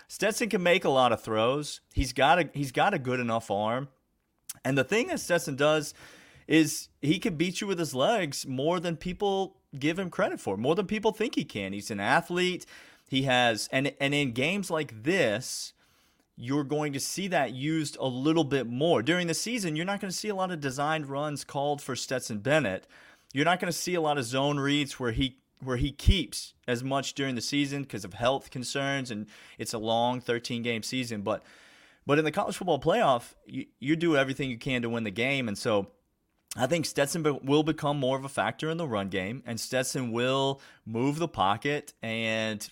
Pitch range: 120-155 Hz